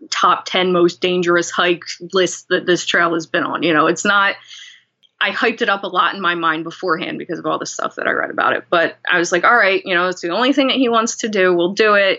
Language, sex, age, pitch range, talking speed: English, female, 20-39, 165-200 Hz, 275 wpm